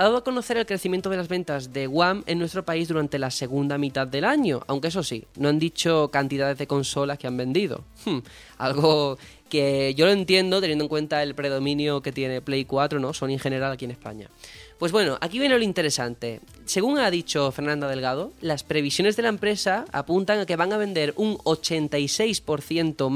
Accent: Spanish